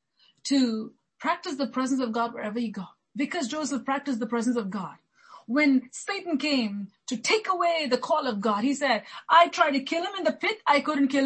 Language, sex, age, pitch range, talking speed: English, female, 30-49, 225-295 Hz, 210 wpm